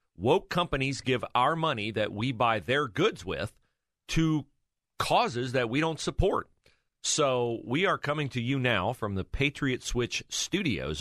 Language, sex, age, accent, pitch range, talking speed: English, male, 40-59, American, 110-135 Hz, 160 wpm